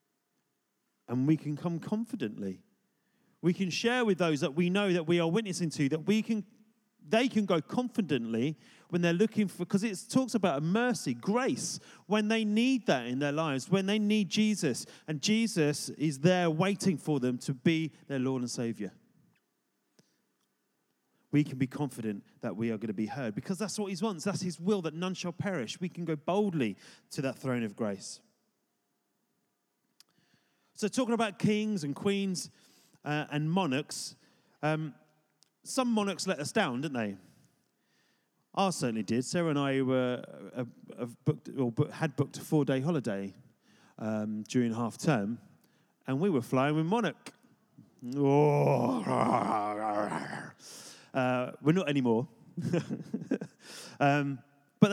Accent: British